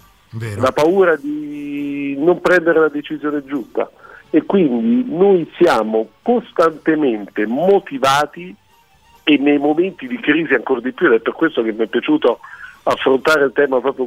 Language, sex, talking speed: Italian, male, 145 wpm